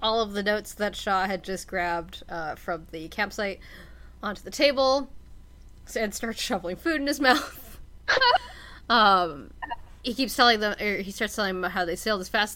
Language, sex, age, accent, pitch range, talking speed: English, female, 20-39, American, 175-230 Hz, 175 wpm